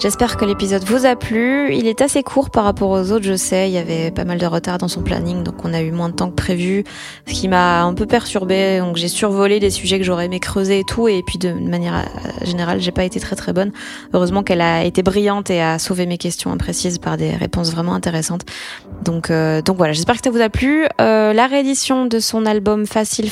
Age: 20-39